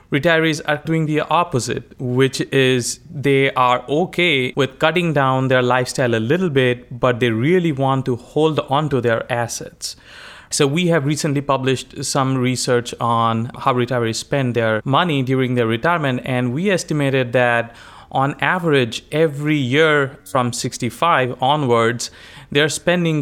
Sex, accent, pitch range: male, Indian, 125-155 Hz